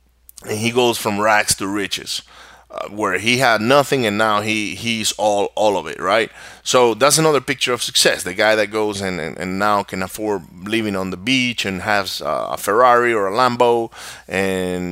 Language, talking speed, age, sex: English, 195 wpm, 30-49, male